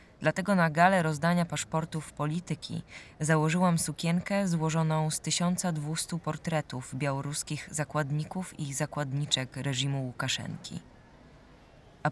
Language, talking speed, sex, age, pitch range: Polish, 95 wpm, female, 20-39, 130-155 Hz